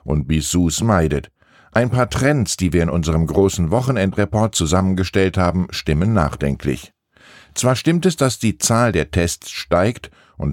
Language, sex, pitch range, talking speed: German, male, 85-120 Hz, 150 wpm